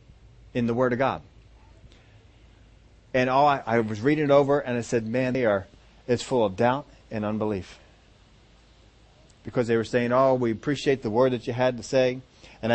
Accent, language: American, English